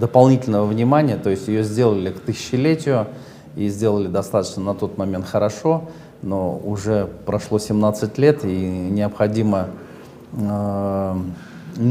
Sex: male